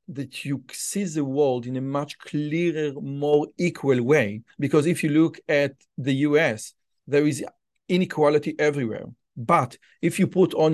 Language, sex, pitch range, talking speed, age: Hebrew, male, 135-175 Hz, 150 wpm, 40-59